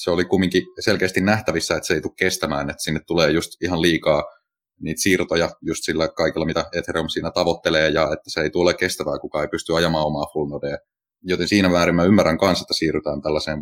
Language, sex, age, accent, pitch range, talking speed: Finnish, male, 30-49, native, 80-90 Hz, 205 wpm